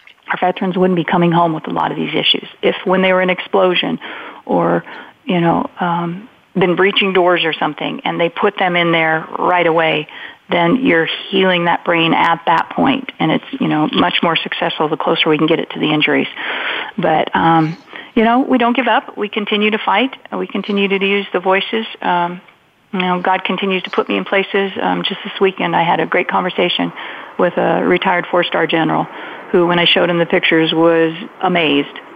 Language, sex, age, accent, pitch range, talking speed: English, female, 40-59, American, 170-200 Hz, 205 wpm